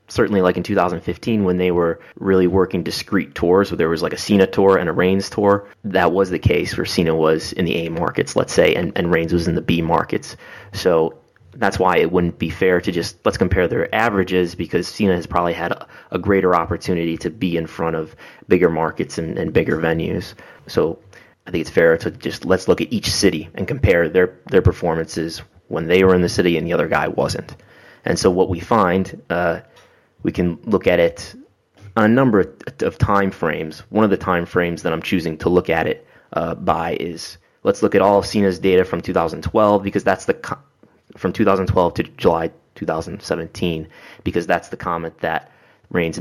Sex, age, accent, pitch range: male, 30-49, American, 85-95 Hz